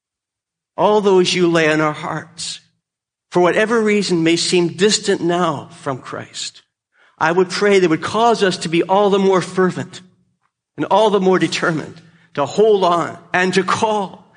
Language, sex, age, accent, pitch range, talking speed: English, male, 50-69, American, 150-185 Hz, 165 wpm